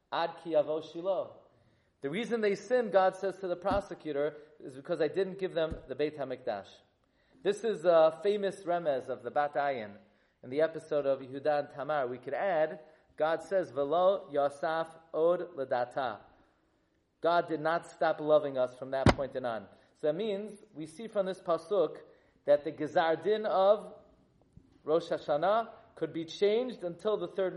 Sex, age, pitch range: male, 40-59, 150-190 Hz